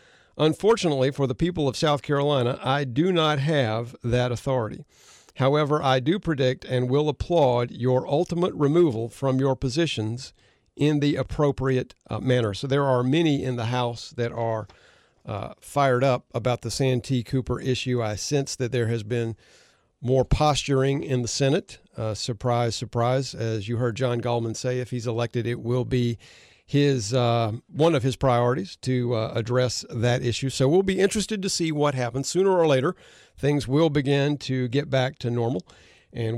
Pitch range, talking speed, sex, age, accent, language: 120-140 Hz, 175 wpm, male, 50-69, American, English